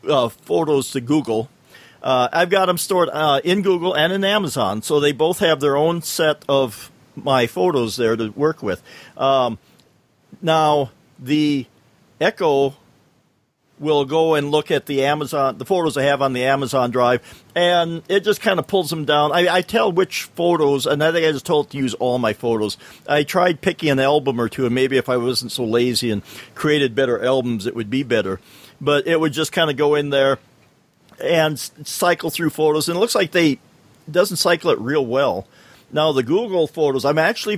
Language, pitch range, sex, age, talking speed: English, 130-160 Hz, male, 50-69, 195 wpm